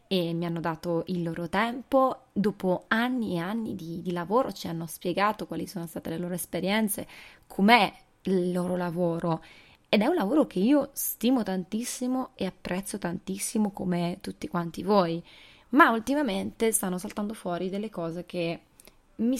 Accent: native